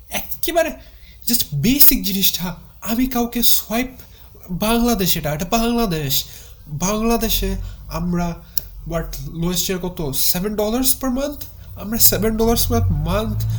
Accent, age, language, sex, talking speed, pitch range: native, 20-39, Bengali, male, 60 wpm, 130-195 Hz